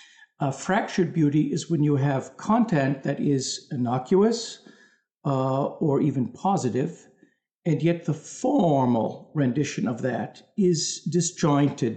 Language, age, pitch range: English, 60-79, 140-180 Hz